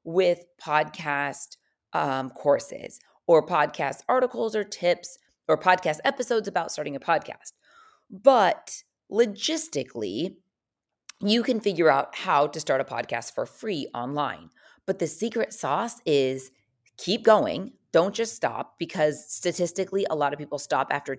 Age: 30-49